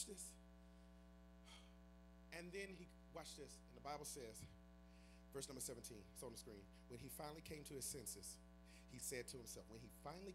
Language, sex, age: English, male, 30-49